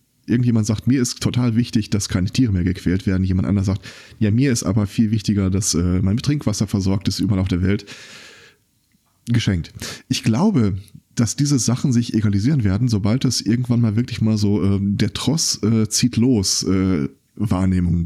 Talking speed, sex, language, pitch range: 185 wpm, male, German, 100-125 Hz